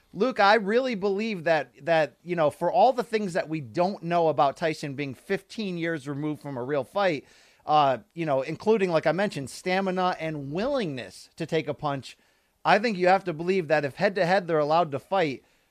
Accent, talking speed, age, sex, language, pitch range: American, 210 wpm, 30-49, male, English, 155-215 Hz